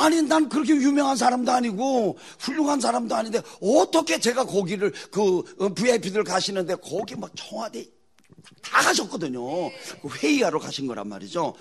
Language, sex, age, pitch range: Korean, male, 40-59, 155-250 Hz